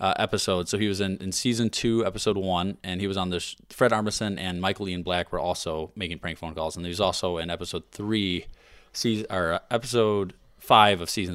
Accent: American